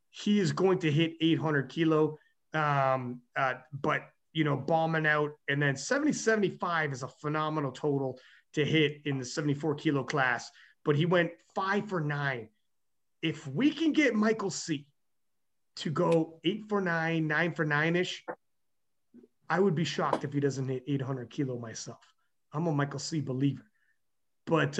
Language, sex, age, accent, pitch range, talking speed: English, male, 30-49, American, 145-185 Hz, 160 wpm